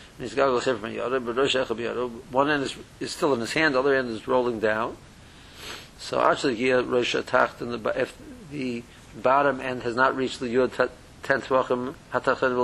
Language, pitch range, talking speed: English, 115-135 Hz, 125 wpm